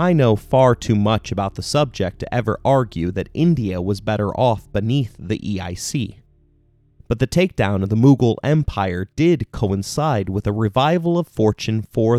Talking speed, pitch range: 165 wpm, 100-130 Hz